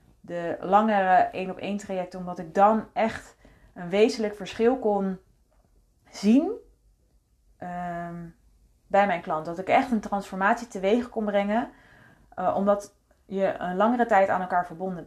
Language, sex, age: Dutch, female, 30-49